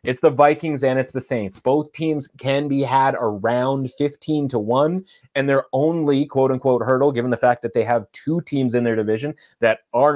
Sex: male